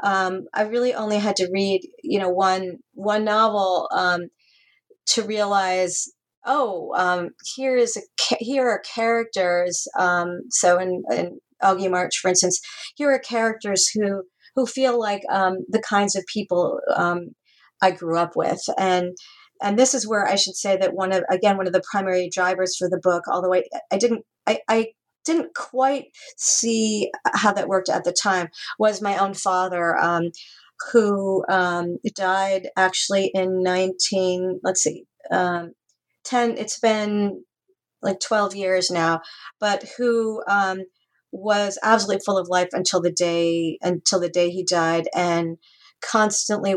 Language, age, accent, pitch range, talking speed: English, 40-59, American, 180-215 Hz, 155 wpm